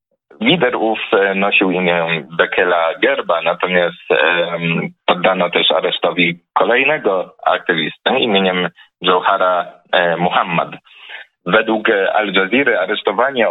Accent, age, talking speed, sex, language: native, 30-49, 80 wpm, male, Polish